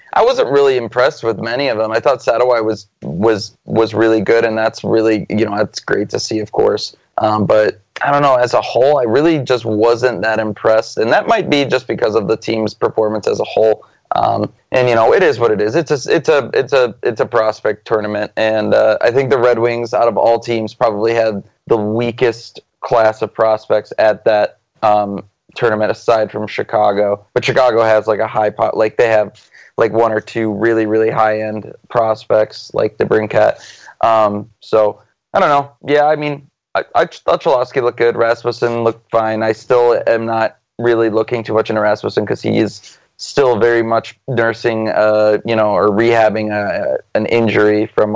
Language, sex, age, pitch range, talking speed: English, male, 20-39, 105-120 Hz, 205 wpm